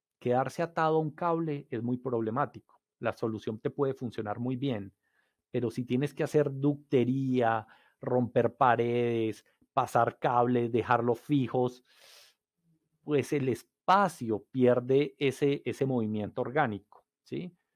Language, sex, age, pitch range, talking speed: English, male, 40-59, 115-145 Hz, 120 wpm